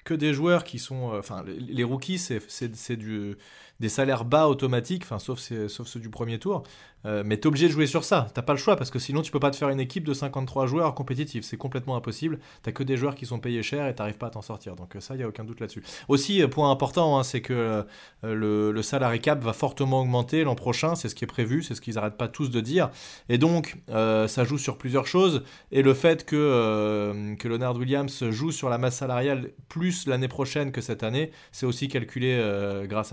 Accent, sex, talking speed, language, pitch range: French, male, 250 wpm, French, 115-140 Hz